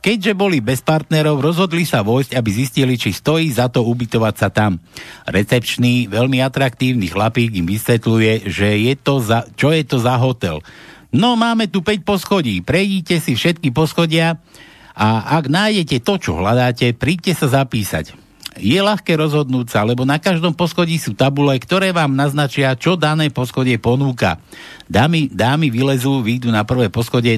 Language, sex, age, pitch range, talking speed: Slovak, male, 60-79, 115-155 Hz, 150 wpm